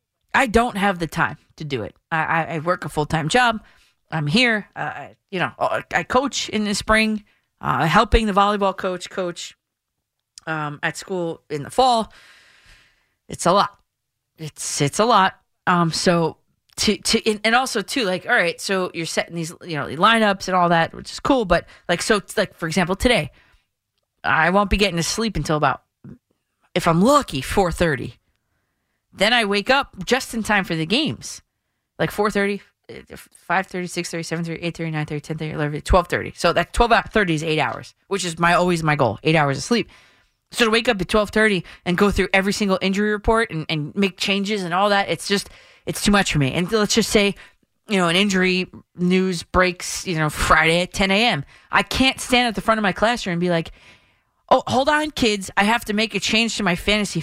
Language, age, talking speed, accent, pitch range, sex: English, 30-49, 200 wpm, American, 165-215 Hz, female